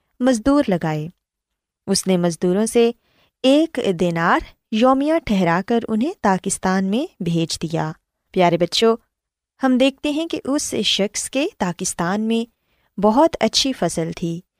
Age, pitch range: 20-39, 185-270 Hz